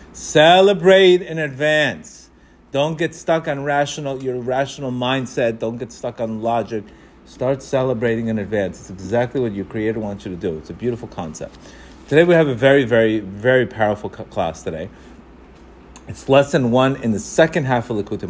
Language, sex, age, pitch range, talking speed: English, male, 30-49, 95-125 Hz, 175 wpm